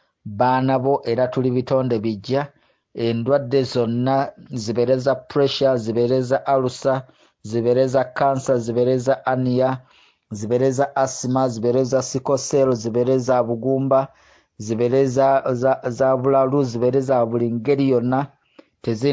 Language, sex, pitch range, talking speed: English, male, 120-135 Hz, 95 wpm